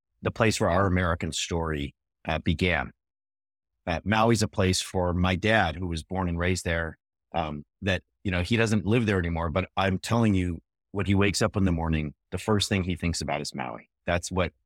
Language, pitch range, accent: English, 85-105 Hz, American